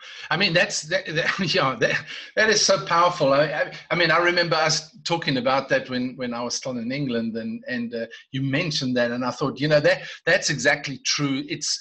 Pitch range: 130-175 Hz